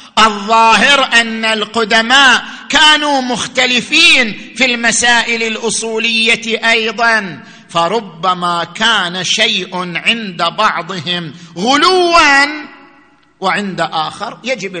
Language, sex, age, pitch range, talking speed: Arabic, male, 50-69, 200-275 Hz, 75 wpm